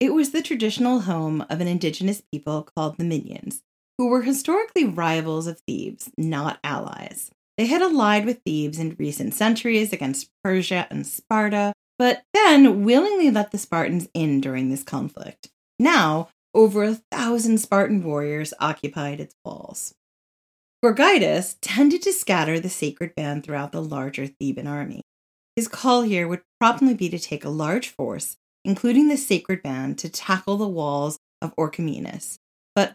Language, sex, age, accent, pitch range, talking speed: English, female, 30-49, American, 150-225 Hz, 155 wpm